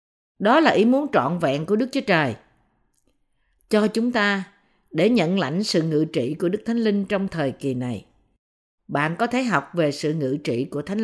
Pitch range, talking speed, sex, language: 160-230 Hz, 200 wpm, female, Vietnamese